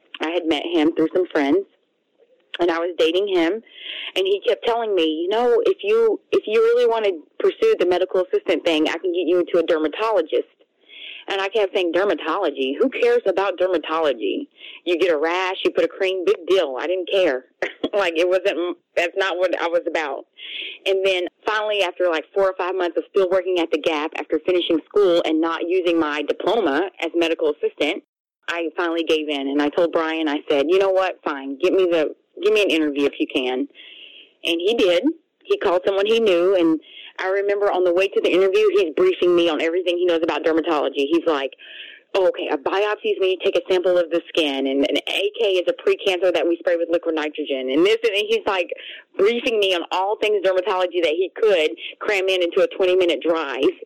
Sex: female